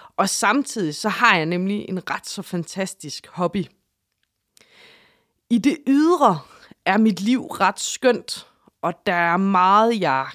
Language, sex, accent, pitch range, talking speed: English, female, Danish, 180-255 Hz, 140 wpm